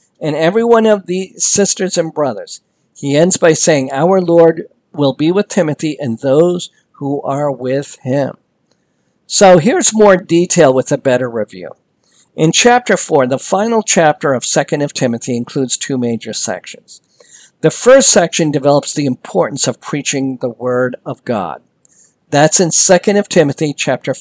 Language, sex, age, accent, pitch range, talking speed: English, male, 50-69, American, 140-180 Hz, 160 wpm